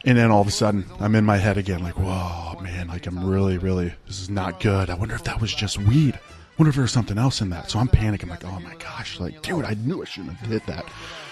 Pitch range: 95-125 Hz